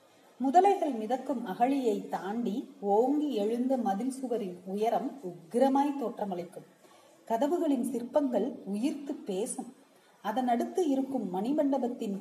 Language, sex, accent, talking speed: Tamil, female, native, 50 wpm